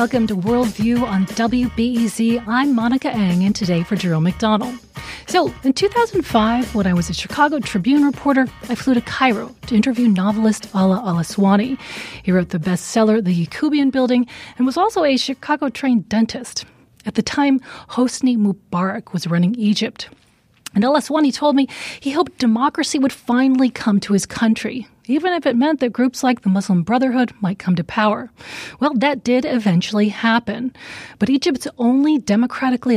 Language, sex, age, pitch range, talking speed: English, female, 30-49, 200-260 Hz, 160 wpm